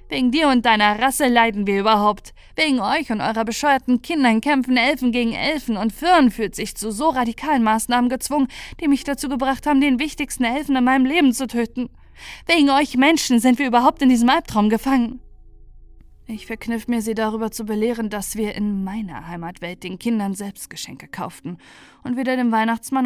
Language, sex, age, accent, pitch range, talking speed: German, female, 10-29, German, 205-260 Hz, 180 wpm